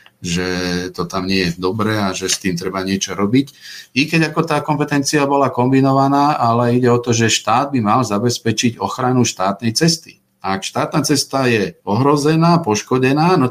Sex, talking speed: male, 180 wpm